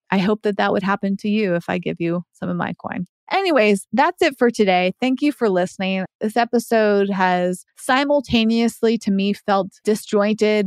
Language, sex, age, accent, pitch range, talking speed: English, female, 20-39, American, 185-215 Hz, 185 wpm